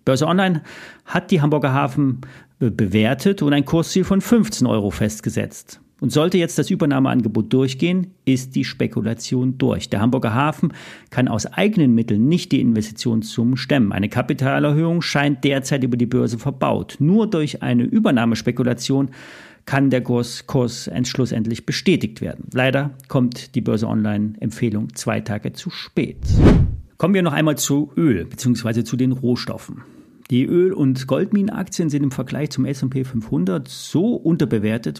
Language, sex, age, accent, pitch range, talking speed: German, male, 40-59, German, 120-150 Hz, 145 wpm